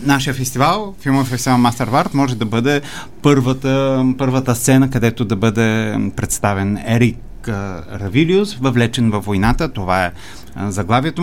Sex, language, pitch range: male, Bulgarian, 110-135 Hz